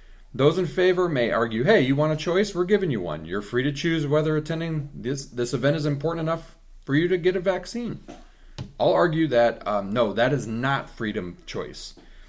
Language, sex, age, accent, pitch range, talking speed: English, male, 30-49, American, 115-160 Hz, 205 wpm